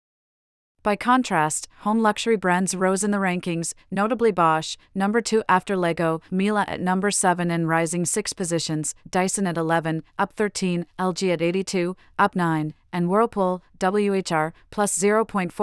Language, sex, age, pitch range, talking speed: English, female, 40-59, 170-200 Hz, 150 wpm